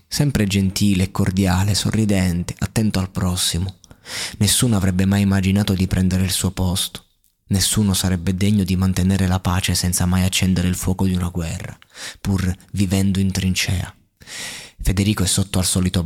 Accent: native